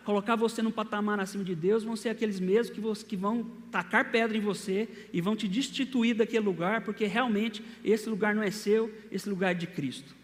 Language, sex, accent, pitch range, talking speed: Portuguese, male, Brazilian, 185-225 Hz, 205 wpm